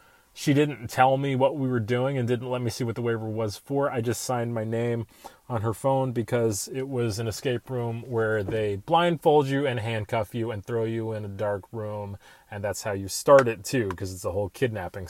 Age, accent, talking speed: 30-49, American, 230 wpm